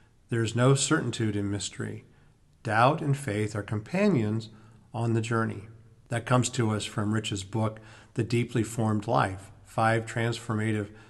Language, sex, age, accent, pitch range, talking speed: English, male, 50-69, American, 110-135 Hz, 140 wpm